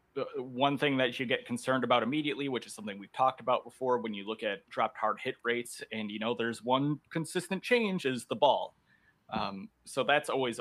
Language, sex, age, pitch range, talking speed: English, male, 30-49, 120-155 Hz, 210 wpm